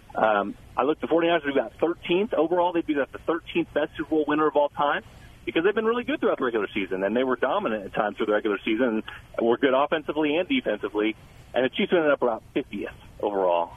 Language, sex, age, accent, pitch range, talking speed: English, male, 40-59, American, 120-205 Hz, 235 wpm